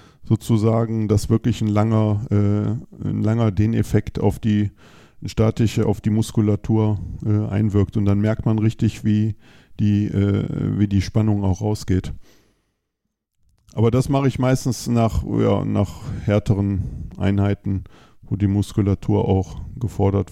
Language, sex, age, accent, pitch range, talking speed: German, male, 50-69, German, 105-115 Hz, 135 wpm